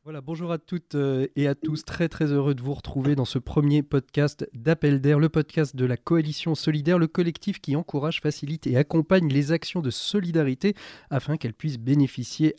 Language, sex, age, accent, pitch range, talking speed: French, male, 40-59, French, 130-160 Hz, 190 wpm